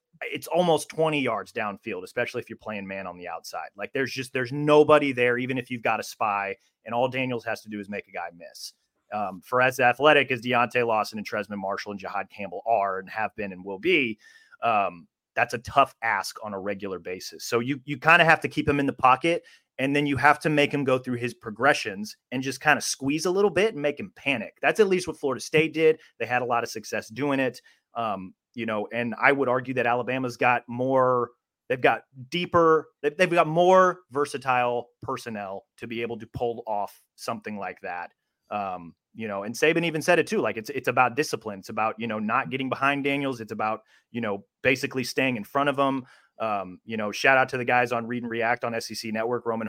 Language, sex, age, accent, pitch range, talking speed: English, male, 30-49, American, 115-145 Hz, 230 wpm